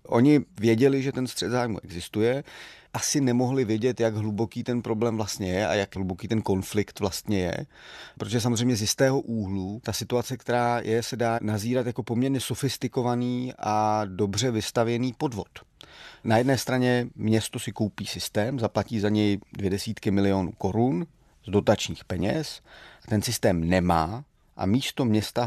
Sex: male